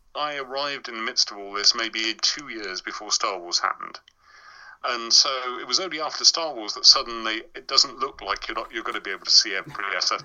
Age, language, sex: 40-59, English, male